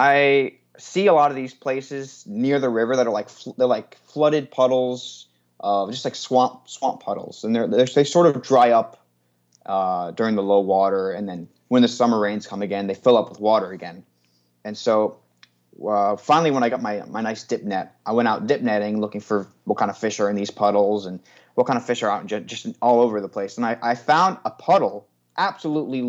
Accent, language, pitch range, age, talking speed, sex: American, English, 95-130 Hz, 20-39, 225 wpm, male